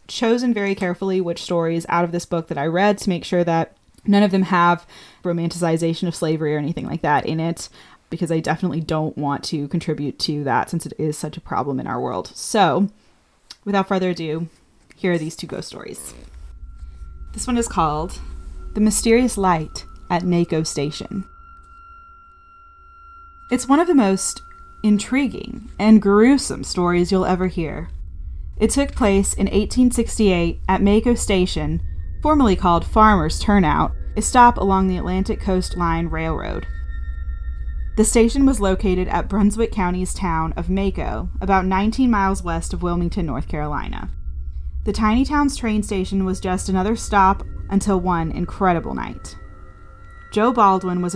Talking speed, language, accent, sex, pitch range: 155 wpm, English, American, female, 160-210 Hz